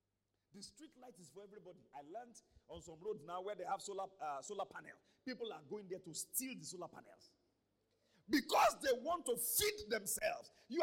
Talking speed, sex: 190 wpm, male